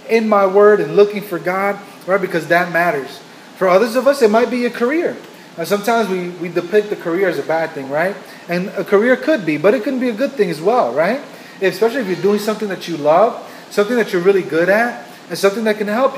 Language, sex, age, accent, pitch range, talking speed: English, male, 30-49, American, 175-220 Hz, 250 wpm